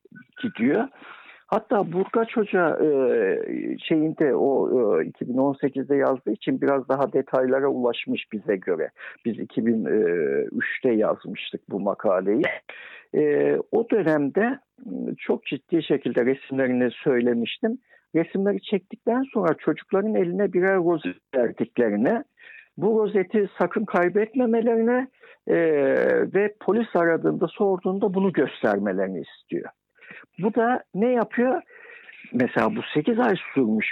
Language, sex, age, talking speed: Turkish, male, 60-79, 105 wpm